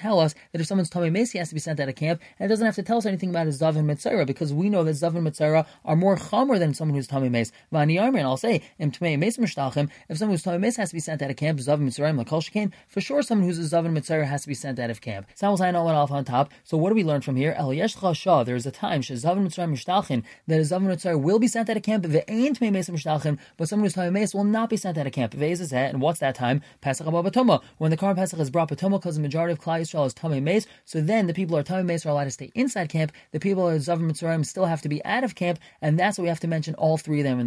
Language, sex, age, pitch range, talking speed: English, male, 20-39, 145-190 Hz, 255 wpm